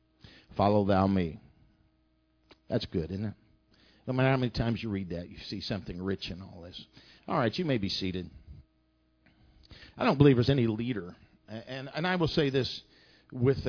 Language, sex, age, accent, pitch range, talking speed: English, male, 50-69, American, 105-155 Hz, 180 wpm